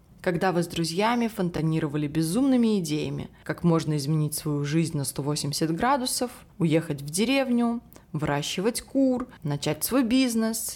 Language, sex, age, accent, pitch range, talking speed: Russian, female, 20-39, native, 160-220 Hz, 130 wpm